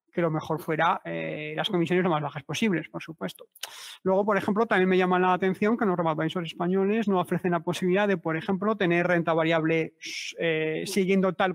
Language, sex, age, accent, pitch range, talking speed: Spanish, male, 30-49, Spanish, 160-210 Hz, 195 wpm